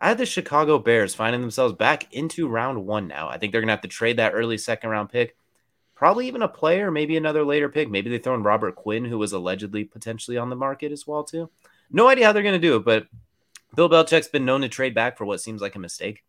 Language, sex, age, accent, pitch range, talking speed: English, male, 30-49, American, 105-150 Hz, 260 wpm